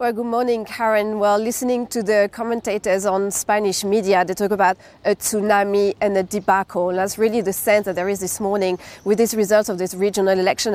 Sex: female